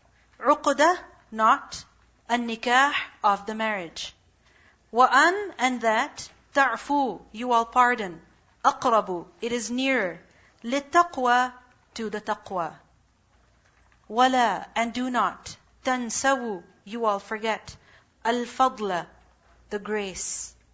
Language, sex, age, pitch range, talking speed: English, female, 40-59, 210-270 Hz, 100 wpm